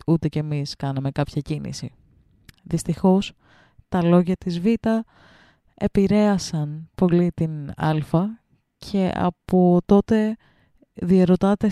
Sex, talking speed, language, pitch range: female, 95 wpm, Greek, 165-215 Hz